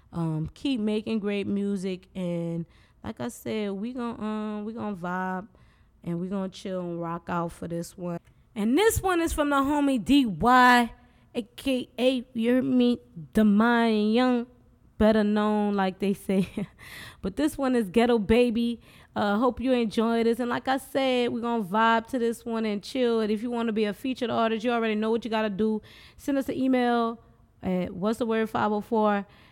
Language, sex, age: English, female, 20-39